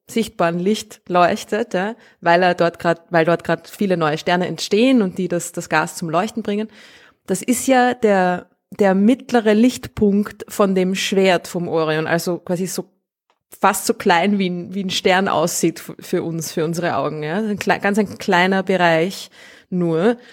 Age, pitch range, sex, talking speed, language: 20-39, 175-210 Hz, female, 175 wpm, German